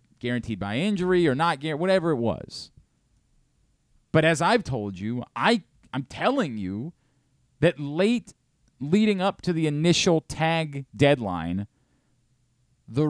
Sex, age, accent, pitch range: male, 30-49, American, 125-170 Hz